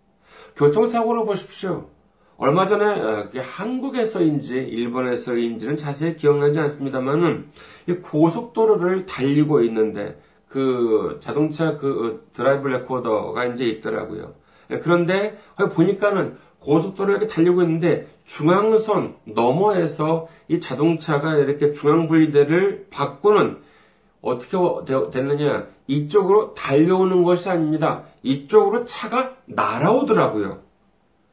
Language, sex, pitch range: Korean, male, 145-215 Hz